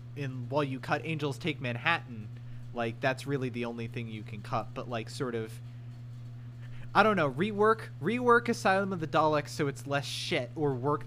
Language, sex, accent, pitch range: English, male, American, 120-155 Hz